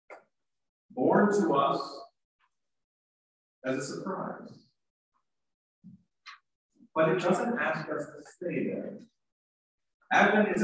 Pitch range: 170-225 Hz